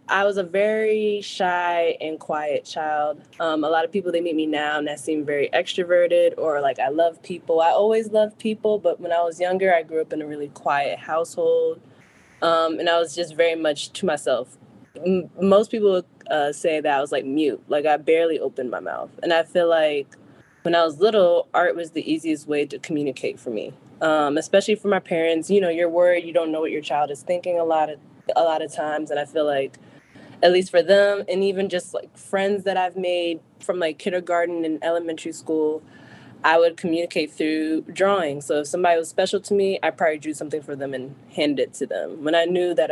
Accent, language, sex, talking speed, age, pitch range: American, English, female, 220 wpm, 10-29, 150-185 Hz